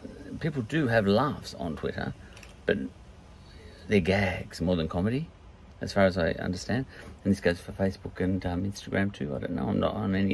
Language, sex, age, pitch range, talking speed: English, male, 50-69, 90-110 Hz, 190 wpm